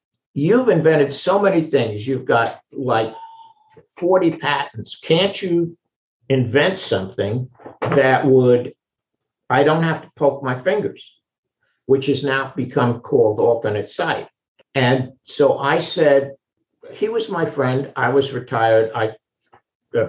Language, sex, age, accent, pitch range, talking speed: English, male, 60-79, American, 130-170 Hz, 125 wpm